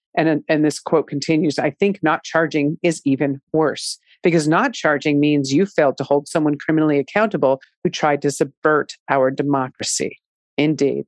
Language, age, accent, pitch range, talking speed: English, 40-59, American, 150-185 Hz, 160 wpm